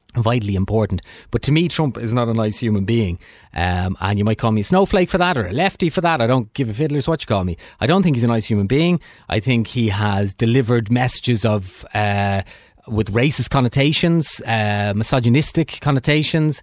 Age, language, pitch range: 30-49, English, 100-140 Hz